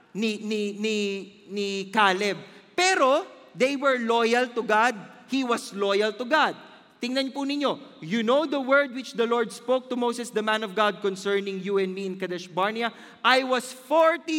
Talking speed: 175 wpm